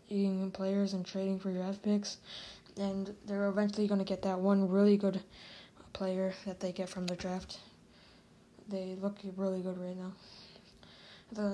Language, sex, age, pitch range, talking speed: English, female, 10-29, 190-200 Hz, 155 wpm